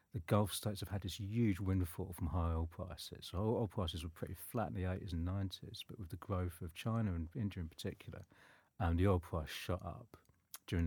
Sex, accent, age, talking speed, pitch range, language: male, British, 50-69, 220 wpm, 85-100 Hz, English